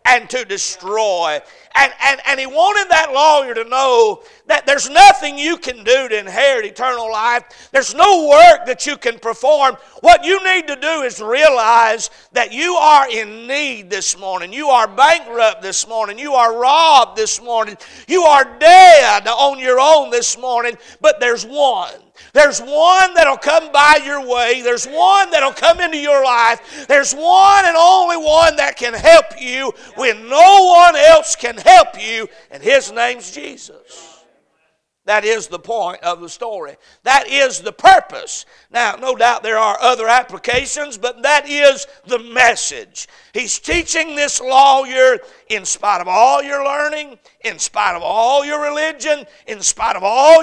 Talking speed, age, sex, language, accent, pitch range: 170 wpm, 50-69, male, English, American, 240-325 Hz